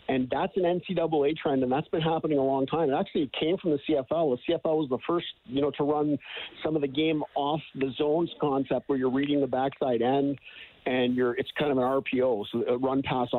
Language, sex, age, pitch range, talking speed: English, male, 50-69, 130-160 Hz, 240 wpm